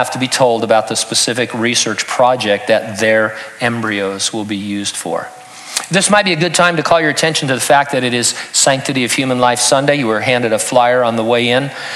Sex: male